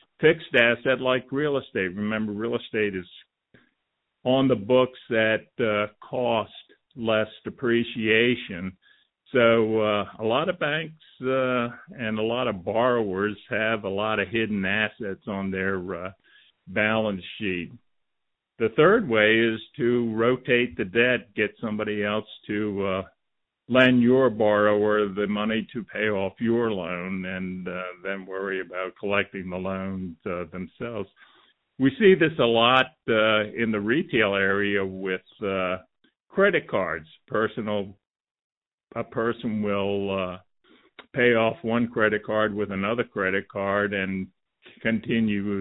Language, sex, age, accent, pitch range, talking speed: English, male, 50-69, American, 95-115 Hz, 135 wpm